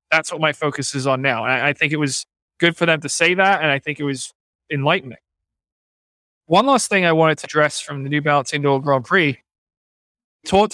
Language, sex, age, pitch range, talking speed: English, male, 20-39, 135-165 Hz, 220 wpm